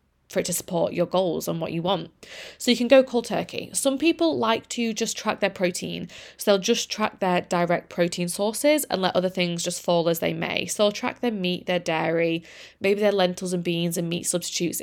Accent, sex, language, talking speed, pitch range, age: British, female, English, 225 wpm, 175-240 Hz, 20-39